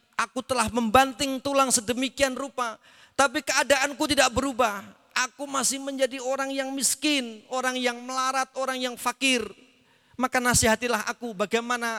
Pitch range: 155-245 Hz